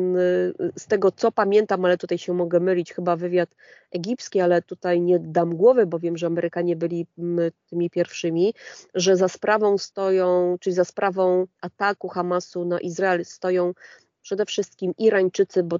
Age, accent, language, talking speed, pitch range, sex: 30-49, native, Polish, 150 wpm, 175-195 Hz, female